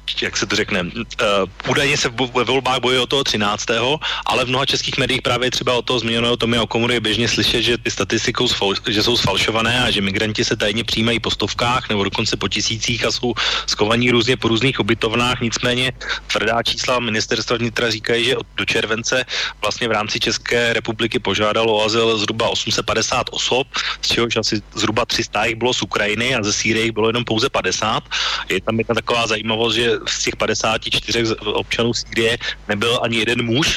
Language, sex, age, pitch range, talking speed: Slovak, male, 30-49, 105-120 Hz, 185 wpm